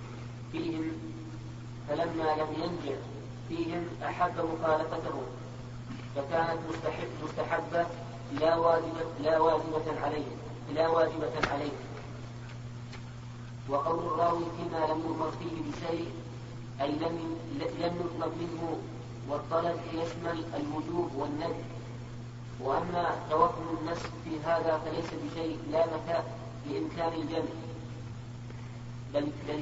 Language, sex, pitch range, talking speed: Arabic, female, 120-165 Hz, 90 wpm